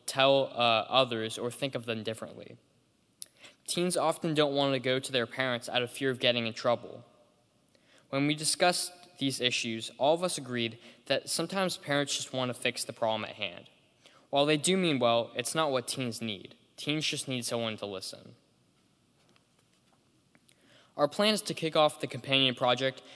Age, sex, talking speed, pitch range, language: 10-29, male, 180 wpm, 115-140 Hz, English